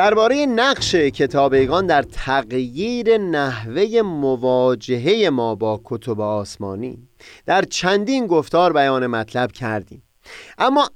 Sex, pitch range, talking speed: male, 125-190 Hz, 100 wpm